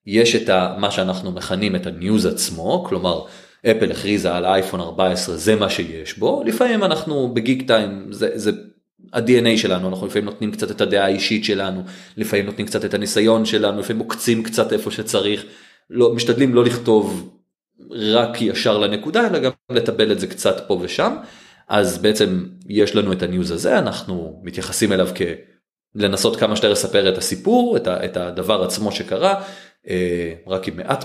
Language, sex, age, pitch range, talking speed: Hebrew, male, 30-49, 95-160 Hz, 165 wpm